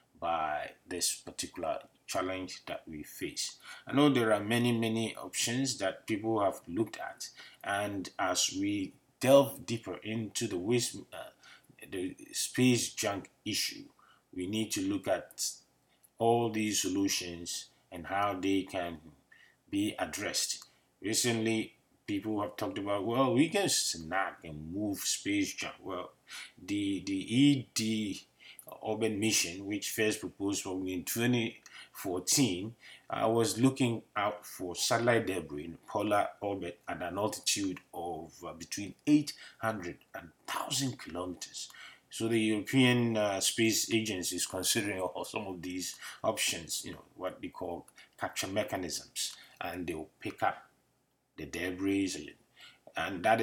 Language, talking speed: English, 135 wpm